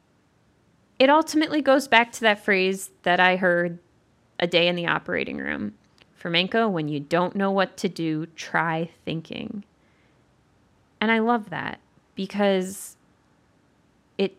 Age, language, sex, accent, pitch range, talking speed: 20-39, English, female, American, 165-210 Hz, 135 wpm